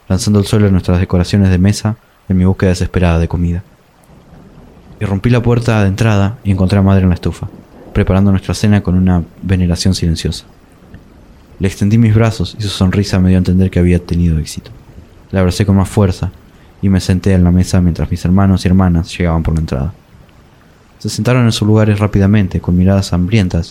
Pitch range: 90-100 Hz